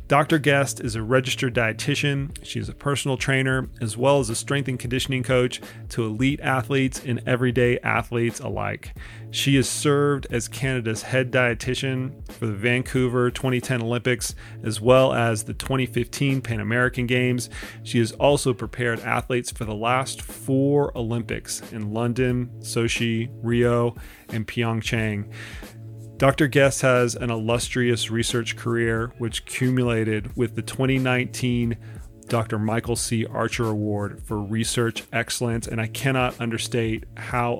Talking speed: 140 wpm